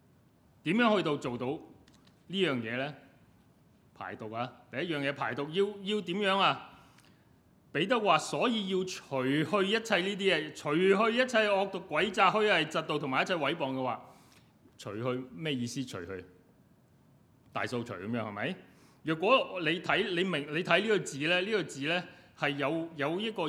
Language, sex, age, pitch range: Chinese, male, 30-49, 130-195 Hz